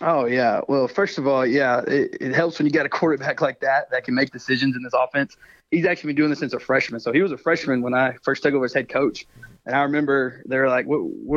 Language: English